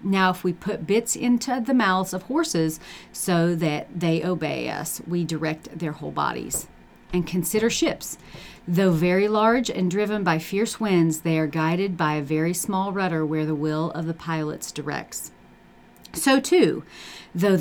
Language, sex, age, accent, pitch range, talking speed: English, female, 40-59, American, 160-195 Hz, 165 wpm